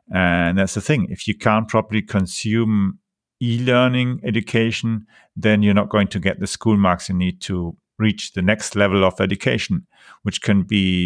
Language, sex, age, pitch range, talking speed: English, male, 50-69, 100-125 Hz, 175 wpm